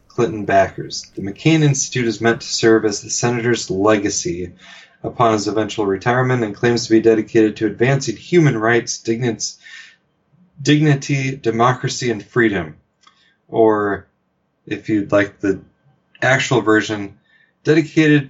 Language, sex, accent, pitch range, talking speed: English, male, American, 105-135 Hz, 125 wpm